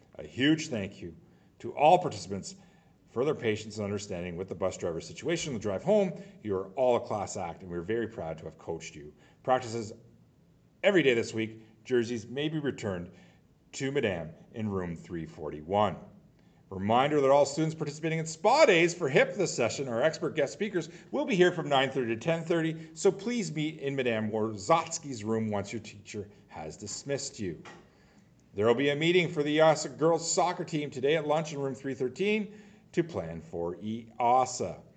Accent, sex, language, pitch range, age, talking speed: American, male, English, 110-165 Hz, 40-59, 180 wpm